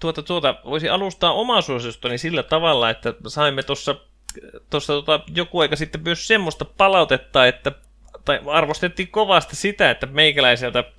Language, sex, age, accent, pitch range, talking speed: Finnish, male, 20-39, native, 125-175 Hz, 140 wpm